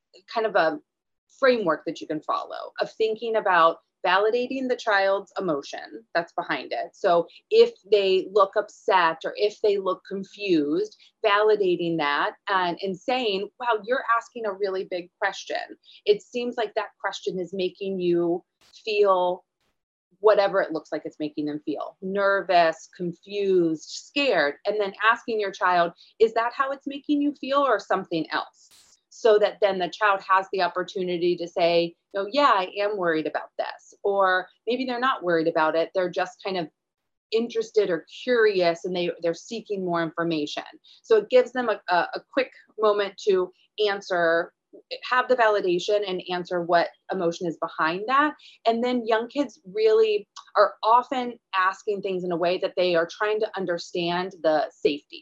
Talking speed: 165 wpm